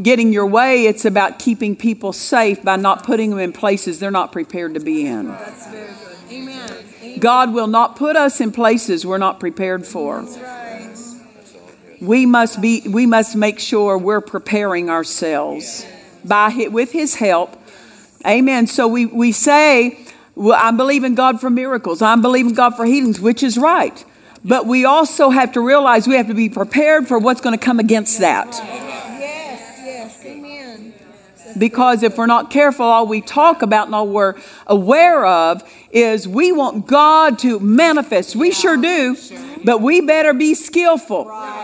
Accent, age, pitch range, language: American, 50-69, 215-275 Hz, English